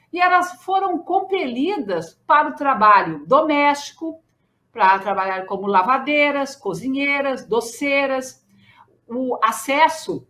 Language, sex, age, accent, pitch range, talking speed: Portuguese, female, 50-69, Brazilian, 200-310 Hz, 95 wpm